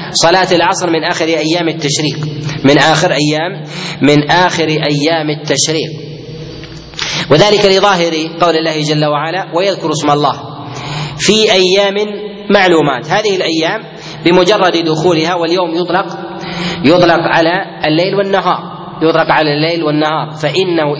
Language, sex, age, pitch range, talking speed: Arabic, male, 30-49, 150-180 Hz, 115 wpm